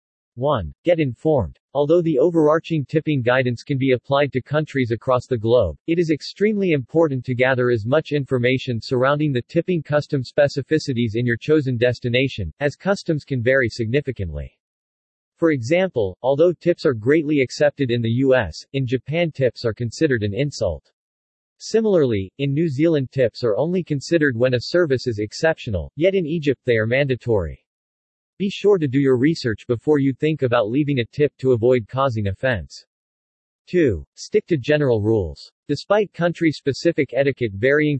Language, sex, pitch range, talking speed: English, male, 120-155 Hz, 160 wpm